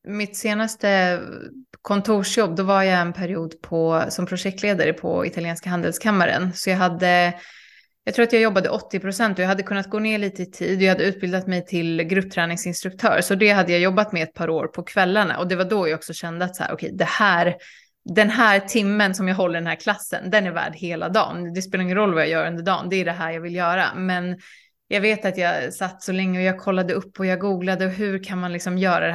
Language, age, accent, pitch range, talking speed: Swedish, 20-39, native, 175-205 Hz, 235 wpm